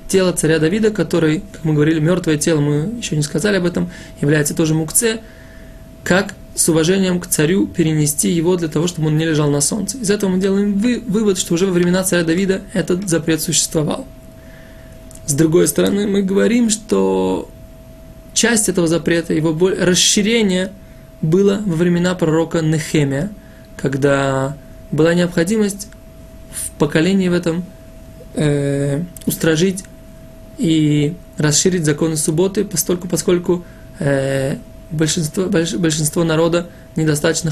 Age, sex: 20-39, male